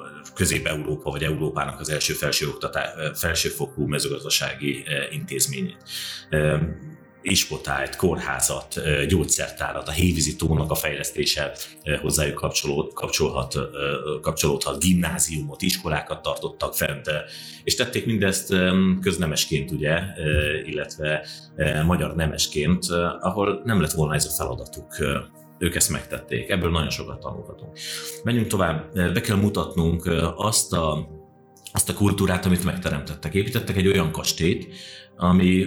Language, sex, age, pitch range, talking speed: Hungarian, male, 30-49, 75-95 Hz, 110 wpm